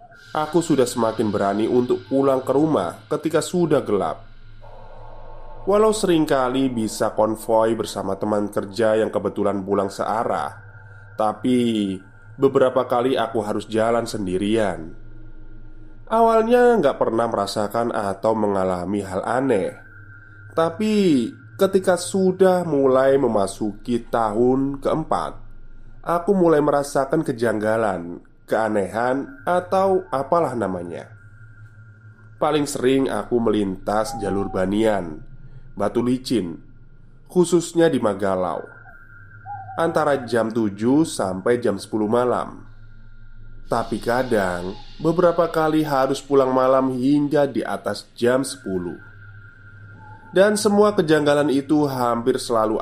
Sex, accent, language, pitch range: male, native, Indonesian, 110-140 Hz